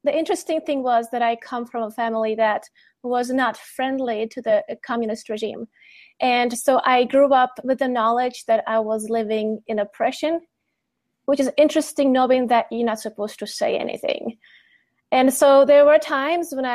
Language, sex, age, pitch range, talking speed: English, female, 20-39, 220-270 Hz, 175 wpm